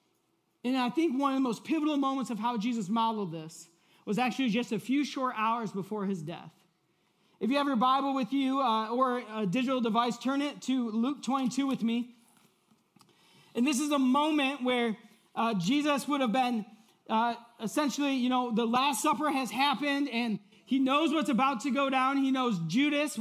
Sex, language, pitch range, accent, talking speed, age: male, English, 220-265 Hz, American, 190 wpm, 40-59